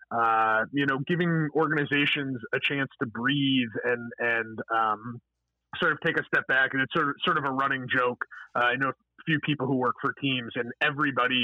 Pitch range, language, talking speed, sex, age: 125-150 Hz, English, 205 wpm, male, 30-49